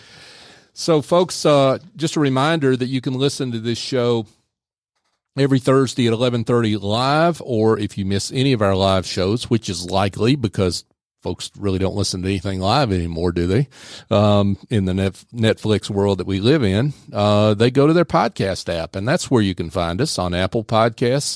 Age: 40-59